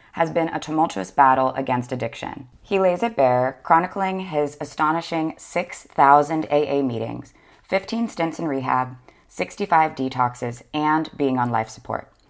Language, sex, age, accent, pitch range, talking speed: English, female, 20-39, American, 125-160 Hz, 135 wpm